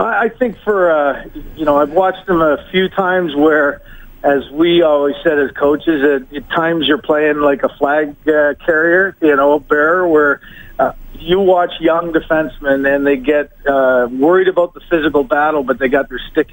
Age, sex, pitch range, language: 50-69, male, 135-160 Hz, English